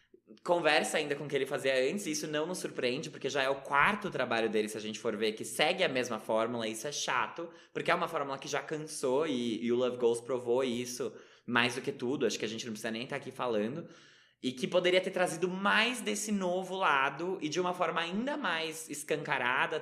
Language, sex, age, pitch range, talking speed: Portuguese, male, 20-39, 115-150 Hz, 235 wpm